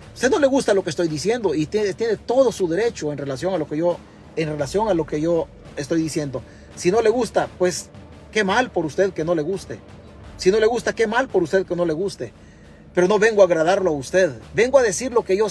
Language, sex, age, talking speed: Spanish, male, 40-59, 255 wpm